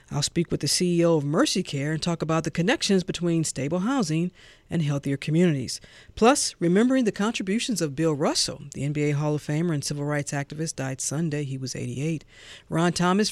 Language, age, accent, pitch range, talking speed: English, 40-59, American, 150-195 Hz, 190 wpm